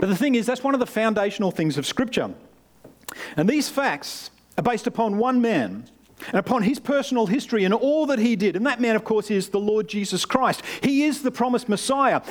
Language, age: English, 50-69